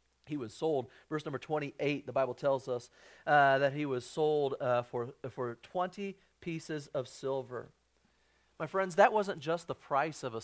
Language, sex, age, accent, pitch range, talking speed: English, male, 40-59, American, 115-180 Hz, 180 wpm